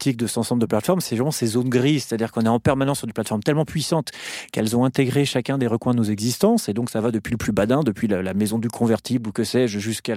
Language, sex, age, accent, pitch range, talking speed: French, male, 30-49, French, 115-145 Hz, 270 wpm